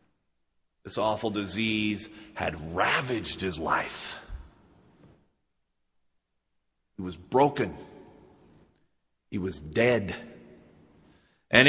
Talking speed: 70 wpm